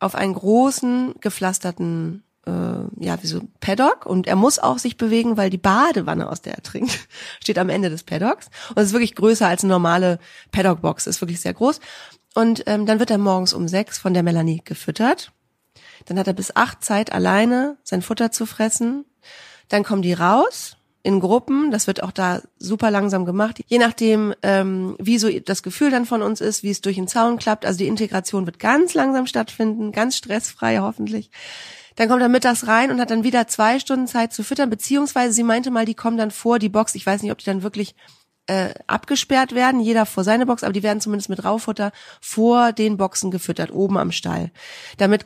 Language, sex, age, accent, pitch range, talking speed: German, female, 30-49, German, 190-235 Hz, 205 wpm